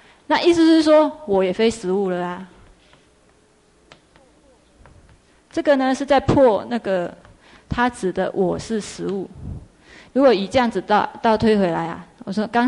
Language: Chinese